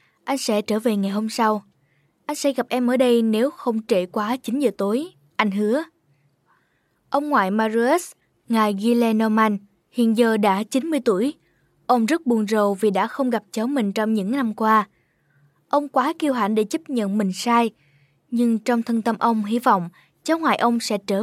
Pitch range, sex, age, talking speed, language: 195-255 Hz, female, 10-29, 190 wpm, Vietnamese